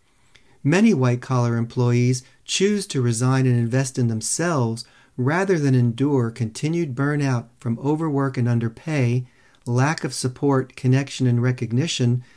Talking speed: 120 wpm